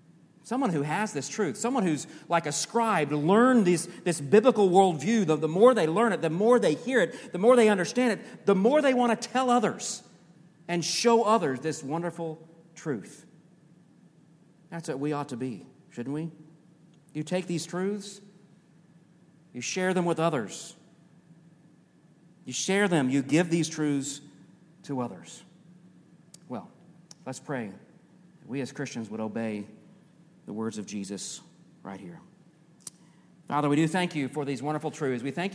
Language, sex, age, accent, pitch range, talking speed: English, male, 40-59, American, 140-180 Hz, 160 wpm